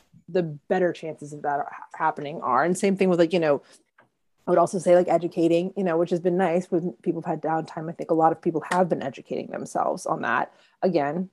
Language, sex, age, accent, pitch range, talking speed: English, female, 30-49, American, 160-190 Hz, 235 wpm